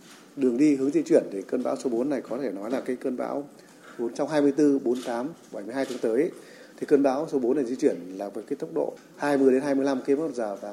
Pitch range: 120-140 Hz